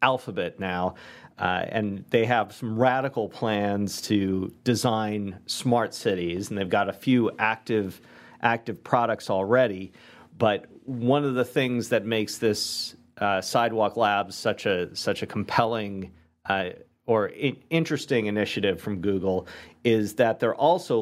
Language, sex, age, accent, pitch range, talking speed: English, male, 40-59, American, 95-115 Hz, 135 wpm